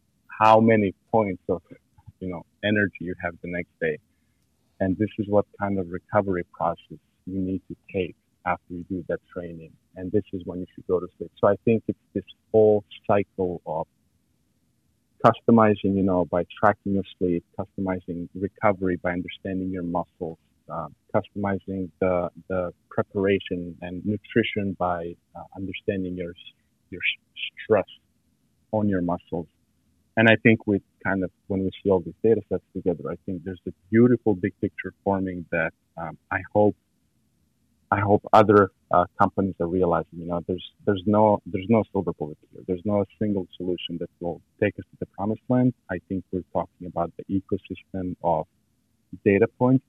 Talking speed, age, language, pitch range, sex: 170 wpm, 40-59, English, 90-105 Hz, male